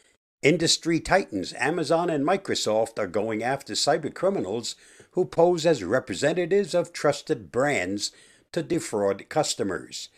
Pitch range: 110-165 Hz